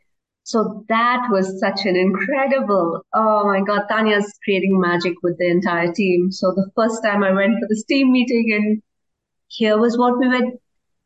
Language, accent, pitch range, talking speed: English, Indian, 185-225 Hz, 180 wpm